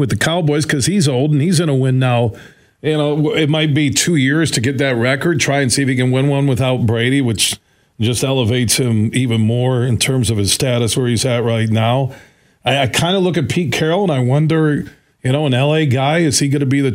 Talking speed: 250 wpm